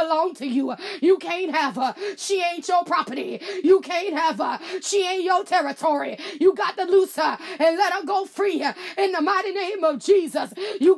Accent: American